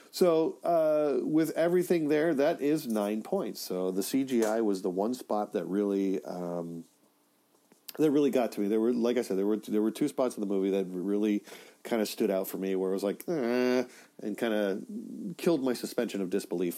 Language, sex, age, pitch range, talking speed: English, male, 40-59, 105-145 Hz, 210 wpm